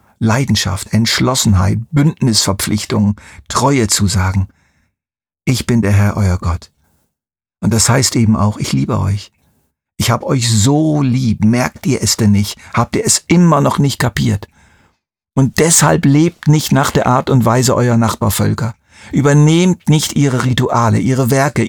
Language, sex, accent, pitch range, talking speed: German, male, German, 100-135 Hz, 150 wpm